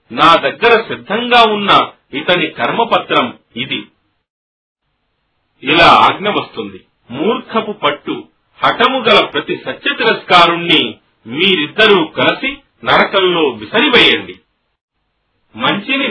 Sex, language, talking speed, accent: male, Telugu, 65 wpm, native